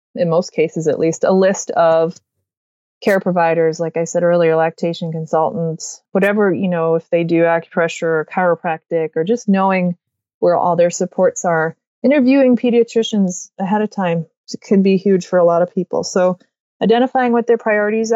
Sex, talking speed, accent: female, 170 wpm, American